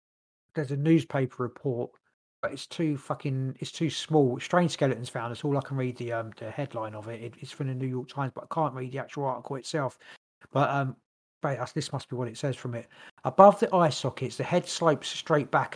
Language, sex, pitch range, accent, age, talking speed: English, male, 130-155 Hz, British, 40-59, 230 wpm